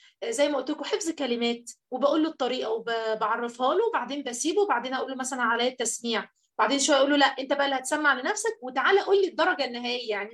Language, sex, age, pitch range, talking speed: Arabic, female, 30-49, 240-315 Hz, 205 wpm